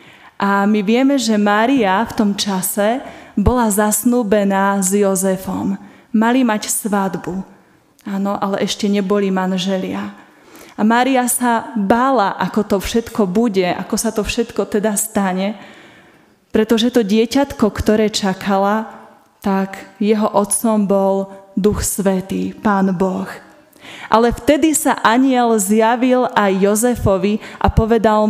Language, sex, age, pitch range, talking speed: Slovak, female, 20-39, 195-230 Hz, 120 wpm